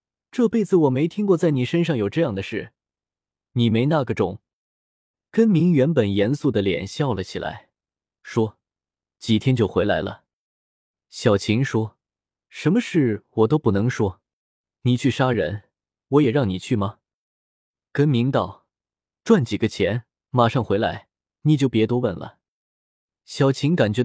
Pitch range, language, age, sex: 110-155 Hz, Chinese, 20-39, male